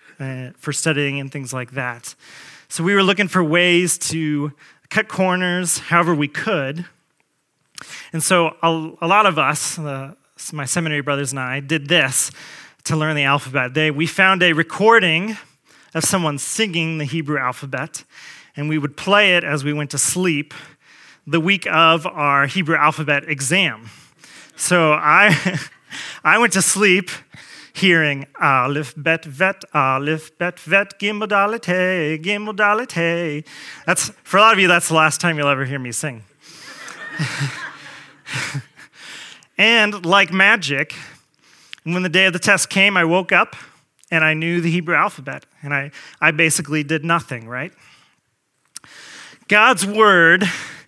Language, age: English, 30-49